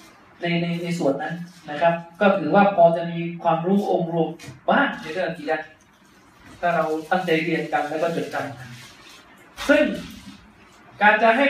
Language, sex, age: Thai, male, 30-49